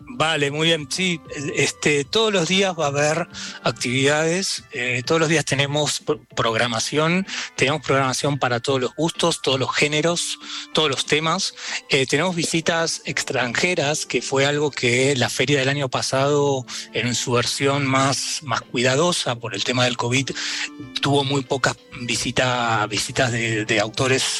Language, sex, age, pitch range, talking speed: Spanish, male, 30-49, 120-150 Hz, 150 wpm